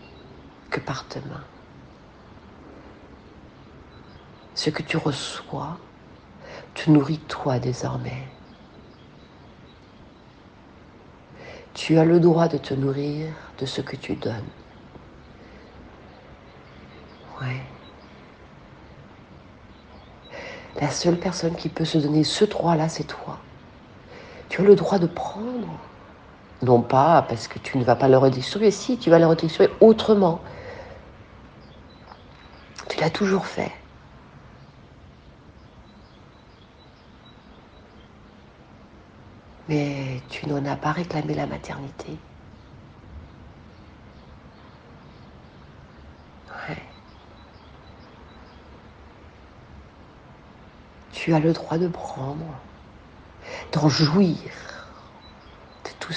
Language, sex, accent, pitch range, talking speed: French, female, French, 125-165 Hz, 85 wpm